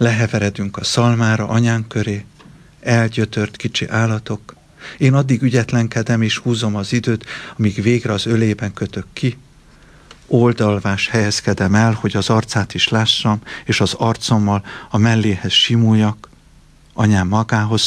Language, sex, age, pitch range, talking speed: Hungarian, male, 50-69, 100-115 Hz, 125 wpm